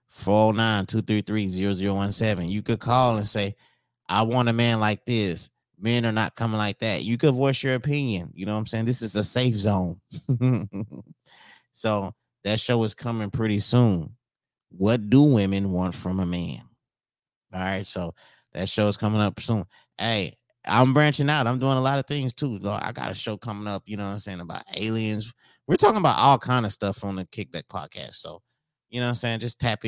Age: 30-49